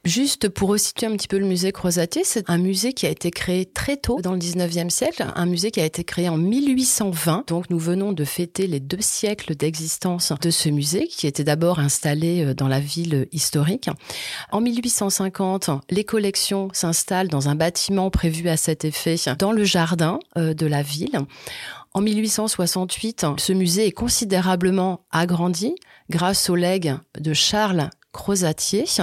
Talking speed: 165 wpm